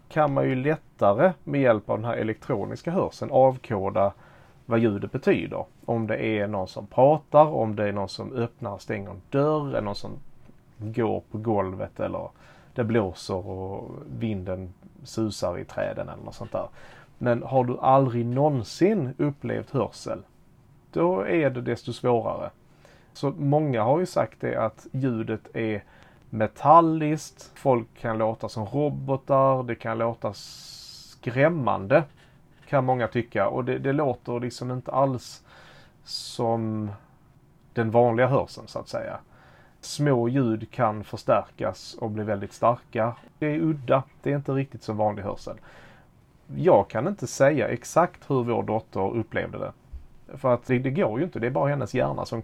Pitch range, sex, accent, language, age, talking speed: 110-140 Hz, male, Norwegian, Swedish, 30-49, 160 wpm